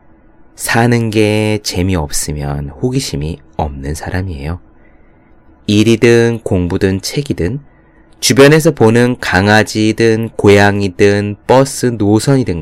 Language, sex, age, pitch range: Korean, male, 30-49, 80-120 Hz